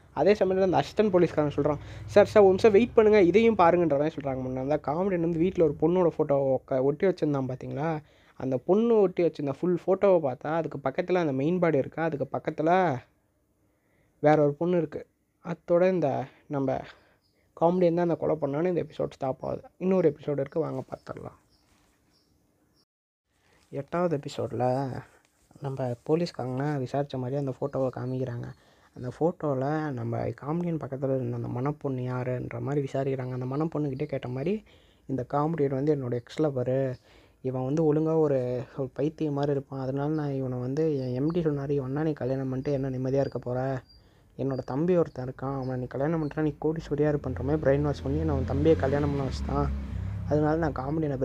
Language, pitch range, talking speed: Tamil, 130-155 Hz, 155 wpm